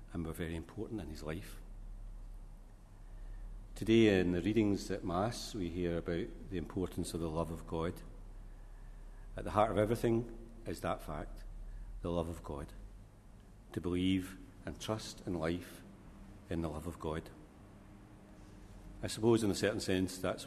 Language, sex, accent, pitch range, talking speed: English, male, British, 85-100 Hz, 150 wpm